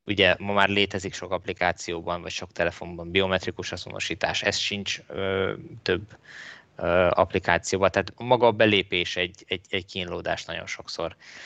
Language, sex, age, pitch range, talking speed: Hungarian, male, 20-39, 90-105 Hz, 135 wpm